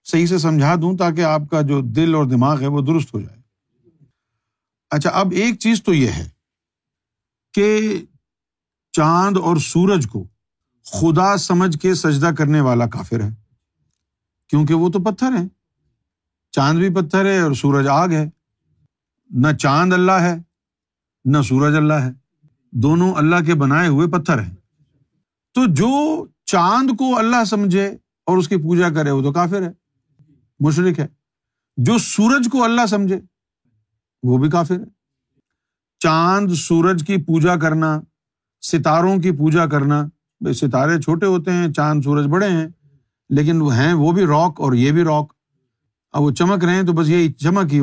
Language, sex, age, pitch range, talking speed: Urdu, male, 50-69, 135-185 Hz, 160 wpm